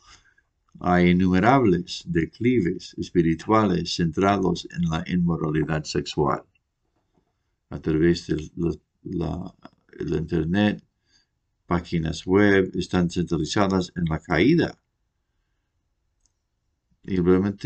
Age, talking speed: 60-79, 80 wpm